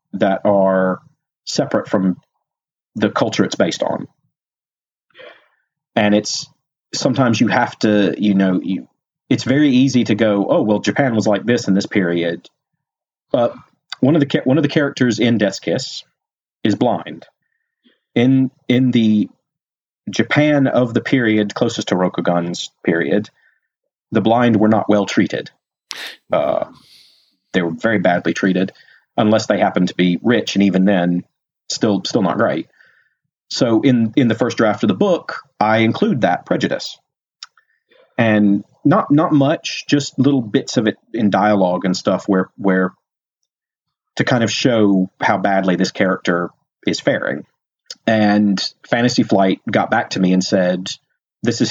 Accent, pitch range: American, 95-120 Hz